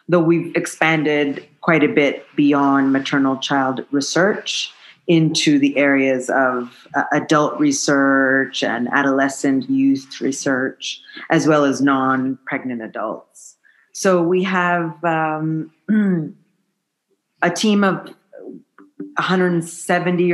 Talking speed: 95 wpm